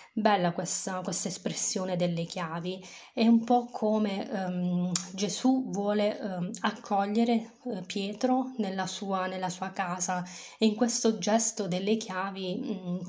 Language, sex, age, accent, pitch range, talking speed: Italian, female, 20-39, native, 180-220 Hz, 130 wpm